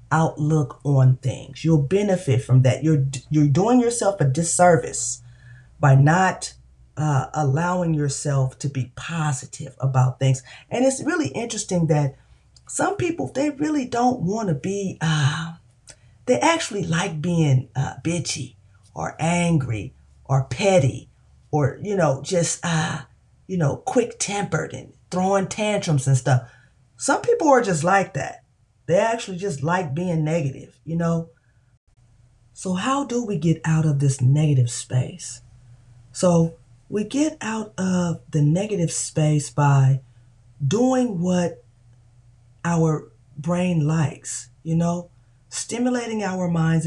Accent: American